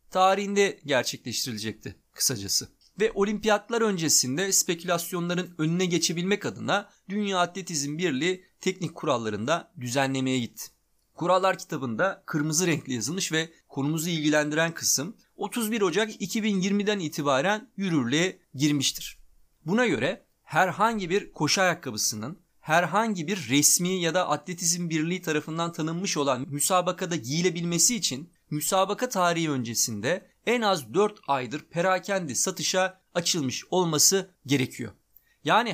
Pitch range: 155-205 Hz